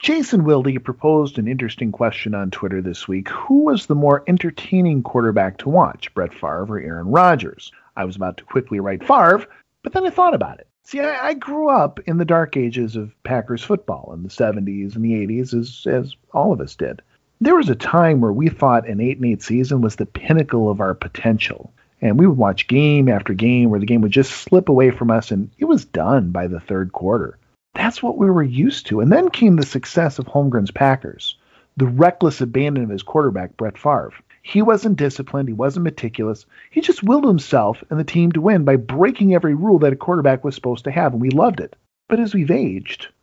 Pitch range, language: 115-170 Hz, English